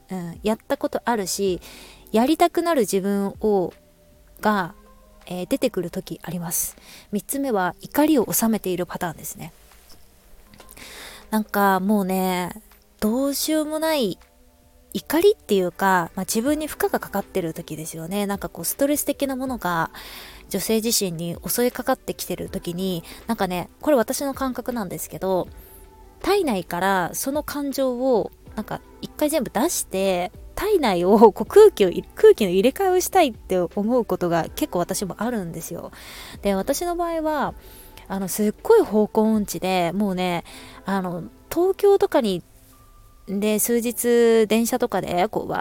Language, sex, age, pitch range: Japanese, female, 20-39, 180-265 Hz